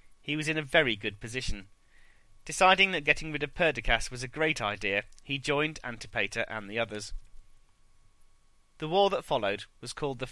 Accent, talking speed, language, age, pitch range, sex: British, 175 wpm, English, 30-49, 110-150 Hz, male